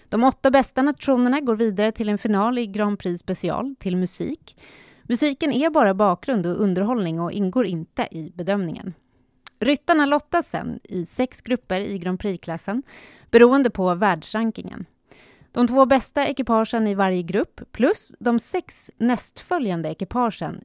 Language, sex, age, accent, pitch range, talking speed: Swedish, female, 30-49, native, 185-250 Hz, 145 wpm